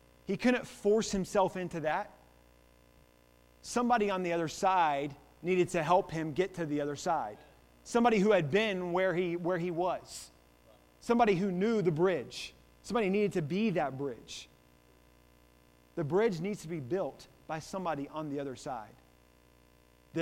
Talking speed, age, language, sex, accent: 155 wpm, 30-49, English, male, American